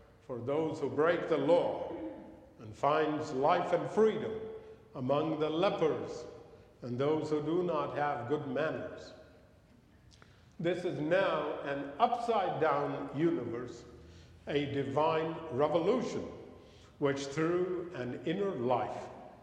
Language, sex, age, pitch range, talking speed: English, male, 50-69, 125-185 Hz, 110 wpm